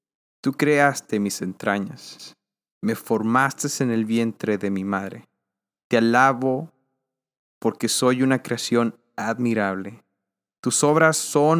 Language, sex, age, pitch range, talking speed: Spanish, male, 20-39, 100-130 Hz, 115 wpm